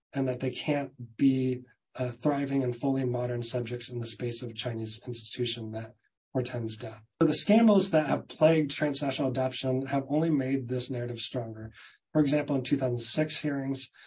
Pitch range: 120-140 Hz